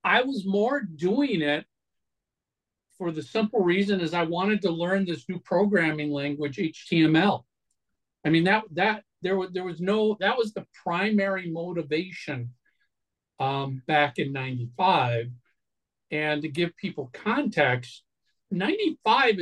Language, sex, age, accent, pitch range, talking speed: English, male, 50-69, American, 135-185 Hz, 135 wpm